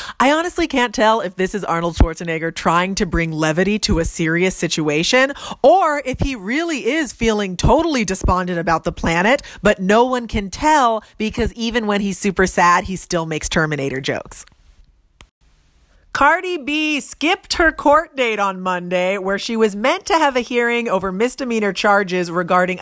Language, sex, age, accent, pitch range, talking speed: English, female, 30-49, American, 185-280 Hz, 170 wpm